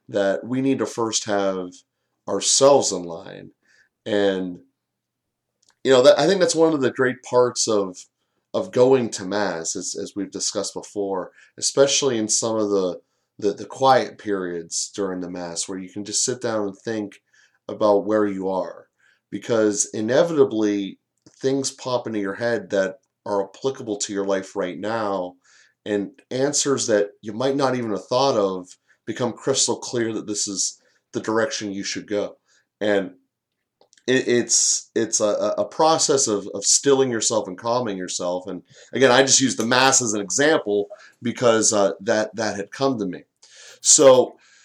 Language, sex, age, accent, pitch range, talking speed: English, male, 30-49, American, 100-130 Hz, 165 wpm